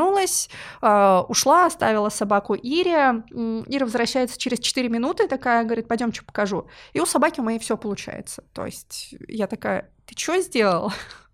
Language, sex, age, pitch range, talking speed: Russian, female, 20-39, 215-260 Hz, 145 wpm